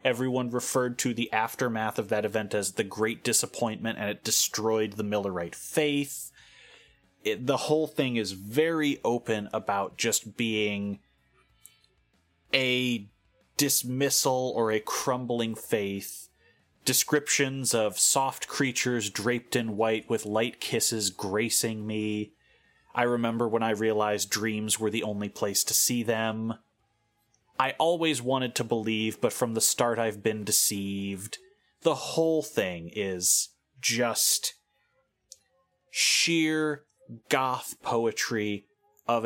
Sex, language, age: male, English, 30-49